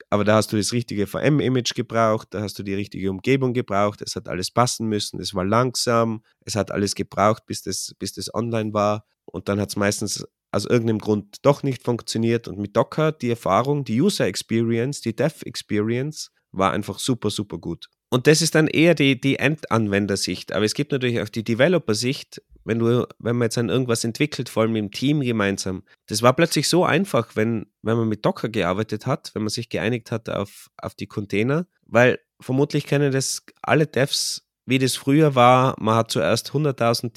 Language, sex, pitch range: German, male, 105-125 Hz